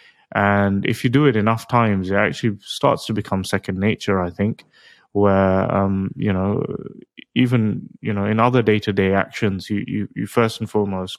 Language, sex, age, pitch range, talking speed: English, male, 20-39, 95-115 Hz, 190 wpm